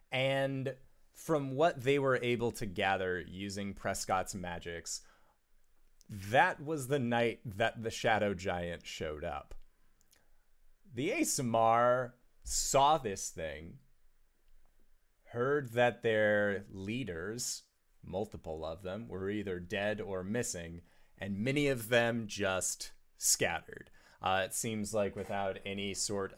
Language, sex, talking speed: English, male, 115 wpm